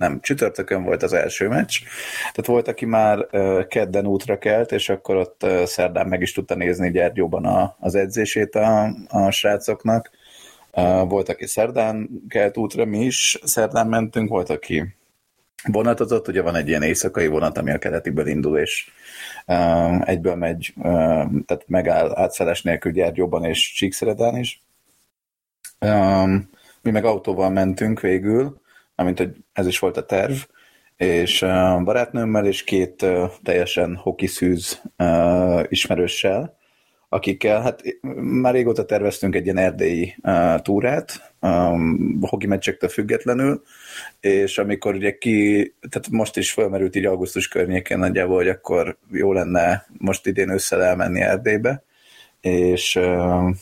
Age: 30-49